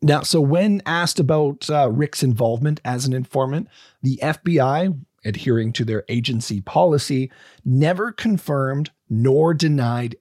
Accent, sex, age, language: American, male, 40-59, English